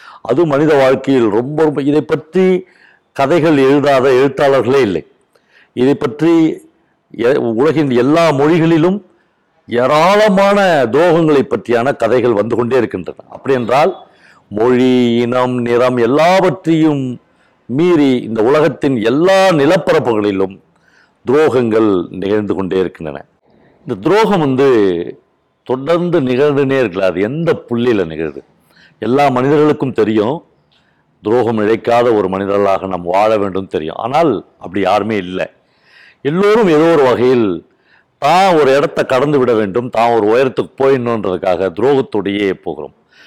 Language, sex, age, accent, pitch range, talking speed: Tamil, male, 50-69, native, 110-160 Hz, 105 wpm